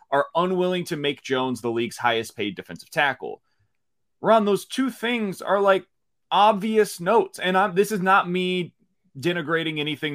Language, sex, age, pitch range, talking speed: English, male, 30-49, 140-215 Hz, 160 wpm